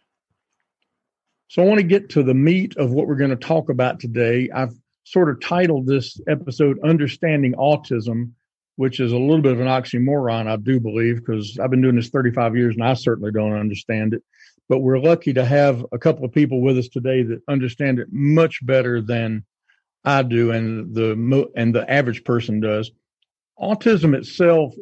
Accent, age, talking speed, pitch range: American, 50-69, 185 wpm, 120-150 Hz